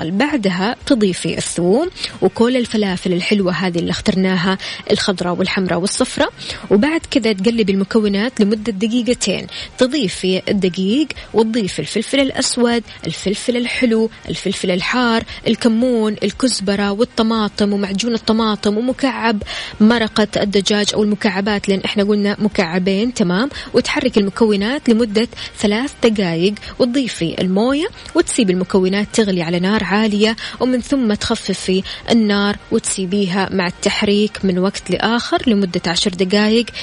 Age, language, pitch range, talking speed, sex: 20-39, Arabic, 195-240 Hz, 110 wpm, female